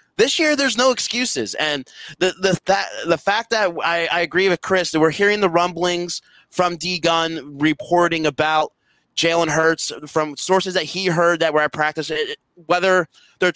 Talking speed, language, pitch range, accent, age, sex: 175 wpm, English, 170-205 Hz, American, 20-39, male